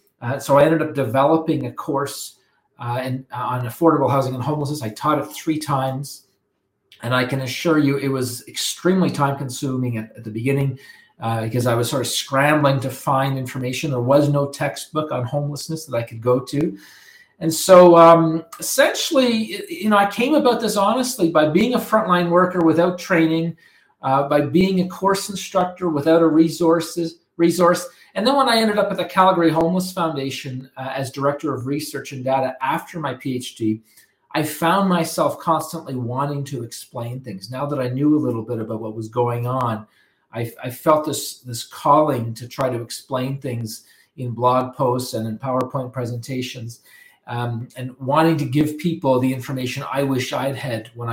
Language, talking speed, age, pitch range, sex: English, 180 wpm, 40-59, 125-165 Hz, male